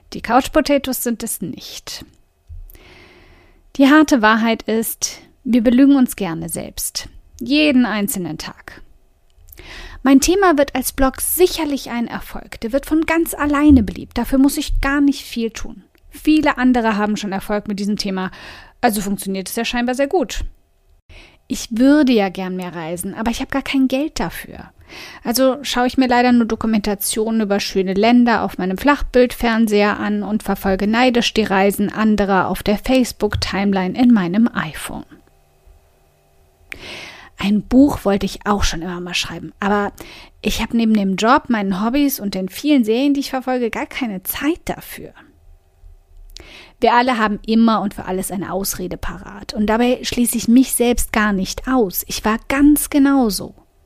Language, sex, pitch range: German, female, 190-260 Hz